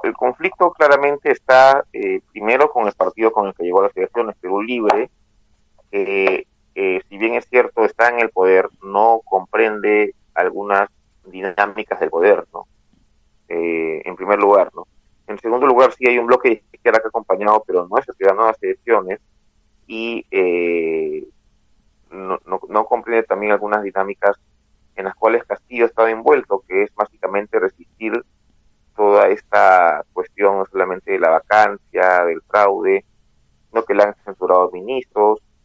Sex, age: male, 30-49